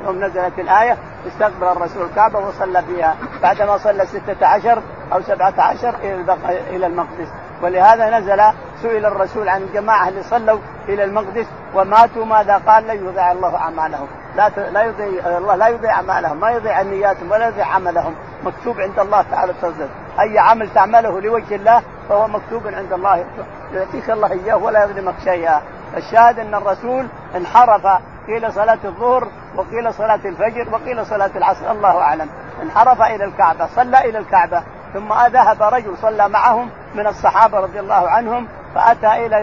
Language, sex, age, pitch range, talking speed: Arabic, male, 50-69, 190-225 Hz, 155 wpm